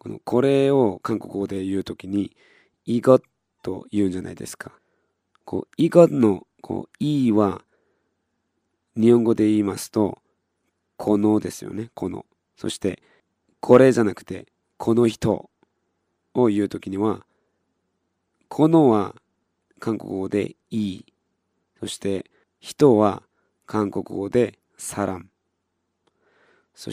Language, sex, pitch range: Japanese, male, 95-115 Hz